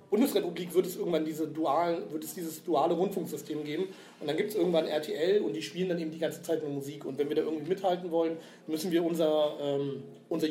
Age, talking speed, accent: 40-59, 200 wpm, German